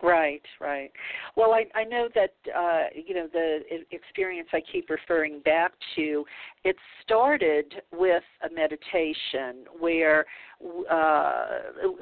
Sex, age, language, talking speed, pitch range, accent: female, 50-69, English, 120 wpm, 150-180 Hz, American